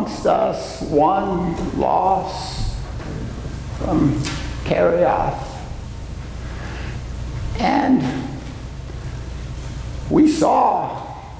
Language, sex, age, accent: English, male, 60-79, American